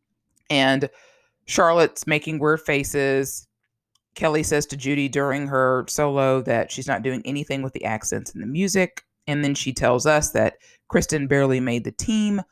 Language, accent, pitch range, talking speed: English, American, 120-155 Hz, 165 wpm